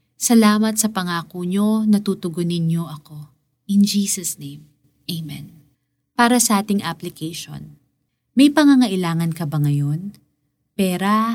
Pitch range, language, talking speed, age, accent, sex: 155-210 Hz, Filipino, 110 wpm, 20-39, native, female